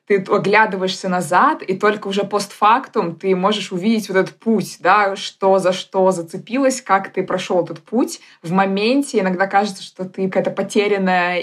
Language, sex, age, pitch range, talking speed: Russian, female, 20-39, 175-200 Hz, 165 wpm